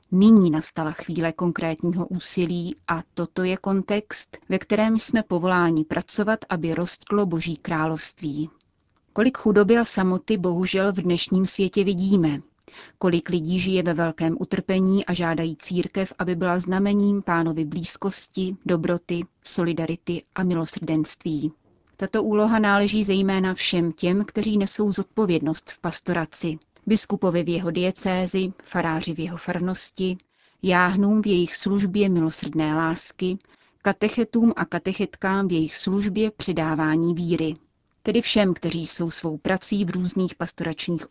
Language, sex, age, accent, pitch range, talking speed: Czech, female, 30-49, native, 165-200 Hz, 125 wpm